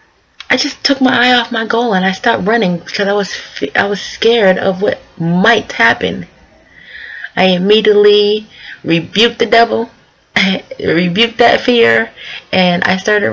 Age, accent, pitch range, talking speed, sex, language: 20-39, American, 165-195 Hz, 155 wpm, female, English